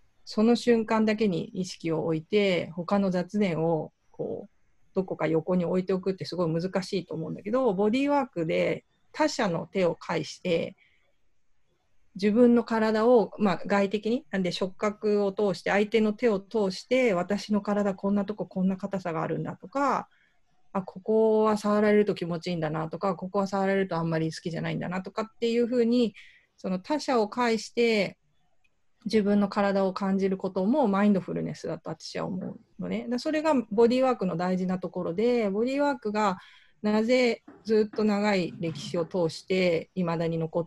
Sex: female